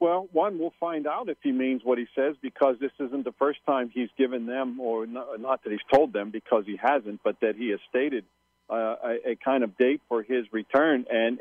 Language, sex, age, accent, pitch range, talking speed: English, male, 50-69, American, 115-135 Hz, 235 wpm